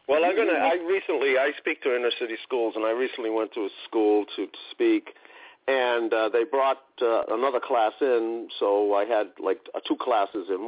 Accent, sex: American, male